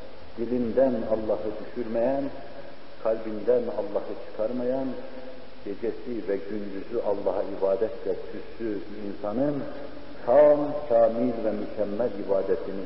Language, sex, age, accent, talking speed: Turkish, male, 50-69, native, 90 wpm